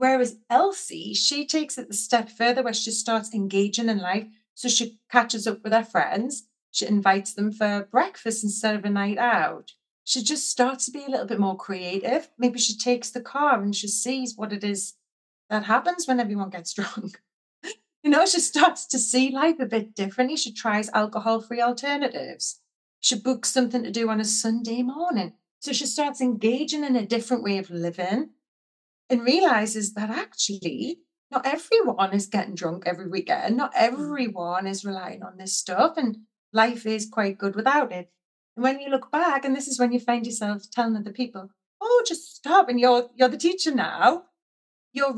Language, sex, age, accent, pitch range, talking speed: English, female, 30-49, British, 210-260 Hz, 185 wpm